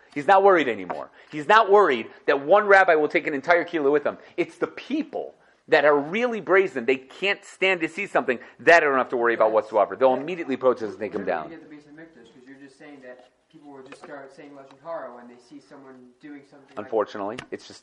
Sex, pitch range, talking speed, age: male, 125-195 Hz, 165 wpm, 30-49